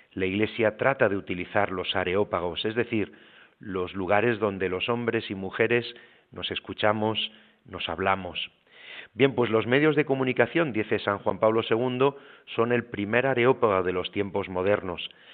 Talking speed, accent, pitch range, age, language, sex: 155 wpm, Spanish, 95-120 Hz, 40-59, Spanish, male